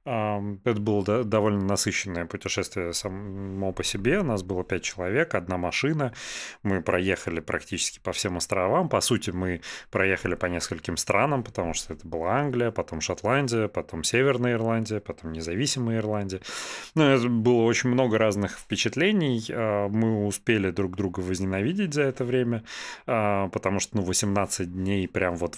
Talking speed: 150 wpm